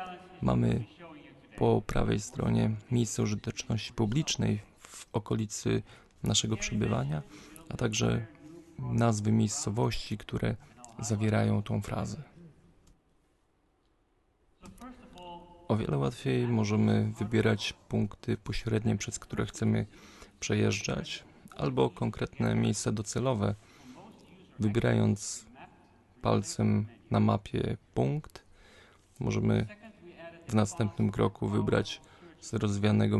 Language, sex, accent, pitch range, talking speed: Polish, male, native, 105-125 Hz, 85 wpm